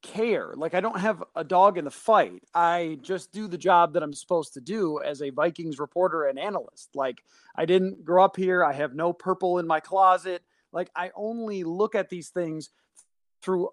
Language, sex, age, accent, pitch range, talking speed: English, male, 30-49, American, 160-190 Hz, 205 wpm